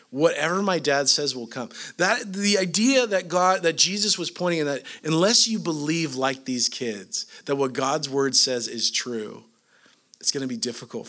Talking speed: 190 wpm